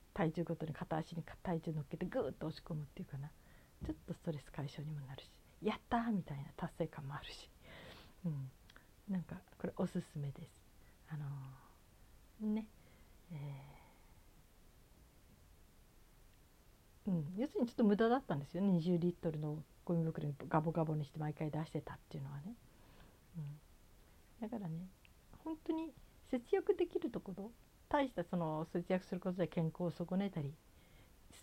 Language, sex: Japanese, female